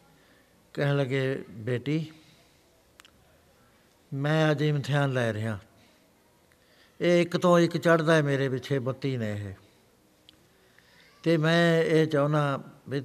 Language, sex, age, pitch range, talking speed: Punjabi, male, 60-79, 125-160 Hz, 110 wpm